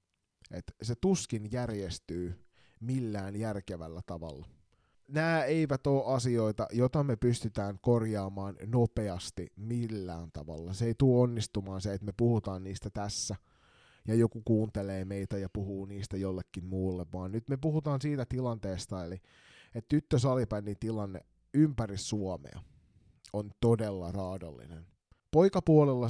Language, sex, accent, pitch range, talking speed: Finnish, male, native, 95-120 Hz, 120 wpm